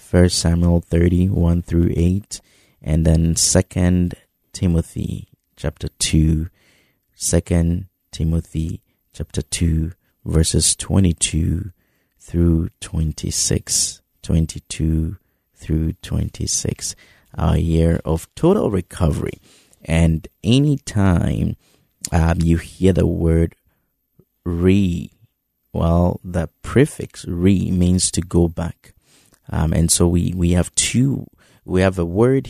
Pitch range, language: 85-95 Hz, English